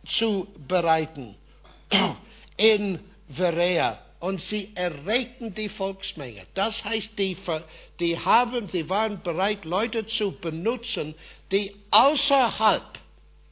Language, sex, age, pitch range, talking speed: German, male, 60-79, 180-225 Hz, 95 wpm